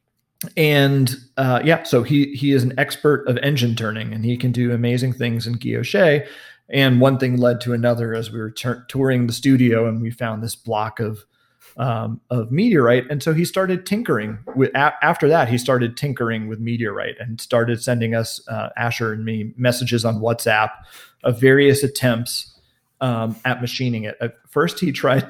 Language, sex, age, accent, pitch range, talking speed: English, male, 40-59, American, 115-135 Hz, 185 wpm